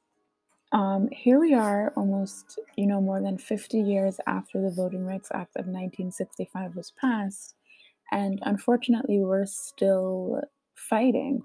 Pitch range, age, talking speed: 190-255 Hz, 20-39, 130 wpm